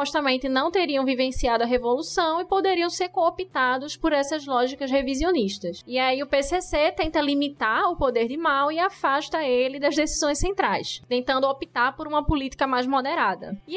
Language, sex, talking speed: Portuguese, female, 165 wpm